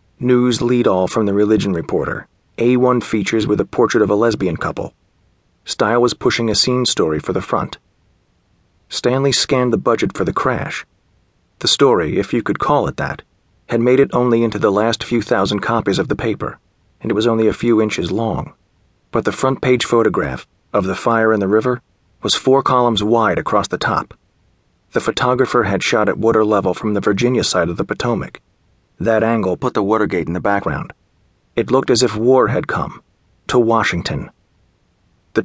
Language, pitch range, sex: English, 105-125 Hz, male